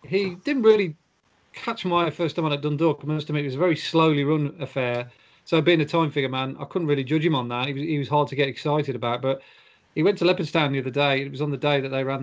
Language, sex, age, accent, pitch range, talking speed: English, male, 40-59, British, 130-155 Hz, 265 wpm